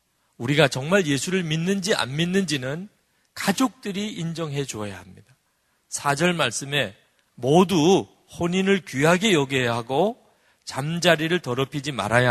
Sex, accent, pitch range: male, native, 115-170 Hz